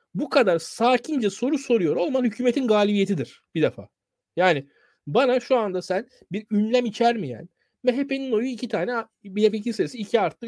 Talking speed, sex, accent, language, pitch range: 165 wpm, male, native, Turkish, 200-255 Hz